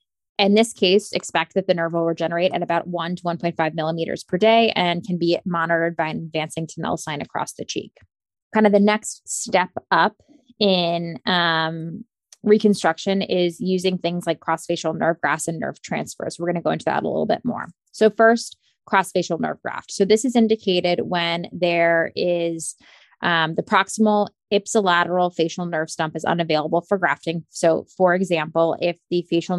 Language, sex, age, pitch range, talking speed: English, female, 20-39, 165-190 Hz, 180 wpm